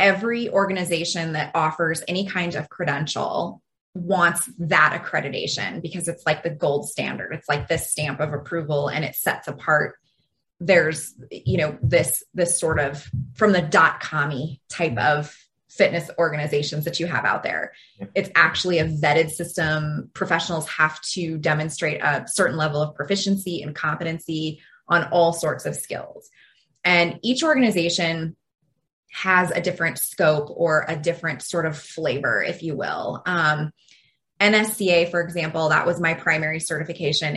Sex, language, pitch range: female, English, 155-175 Hz